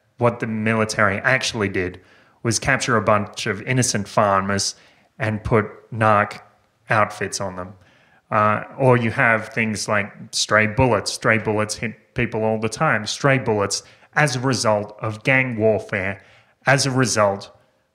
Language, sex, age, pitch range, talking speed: English, male, 30-49, 105-130 Hz, 145 wpm